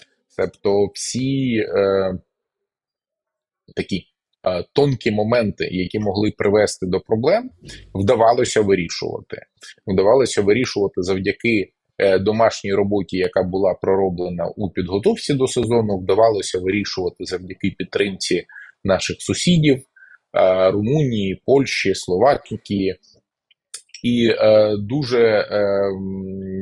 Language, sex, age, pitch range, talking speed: Ukrainian, male, 20-39, 95-120 Hz, 95 wpm